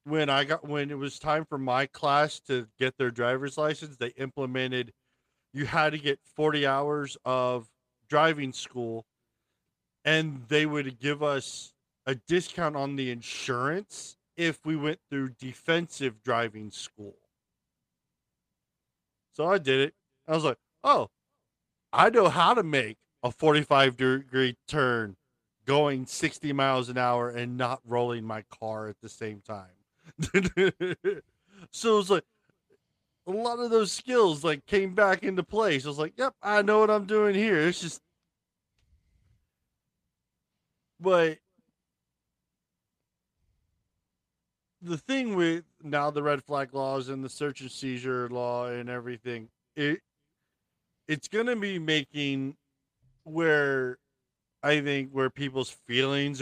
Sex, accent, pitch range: male, American, 125-155 Hz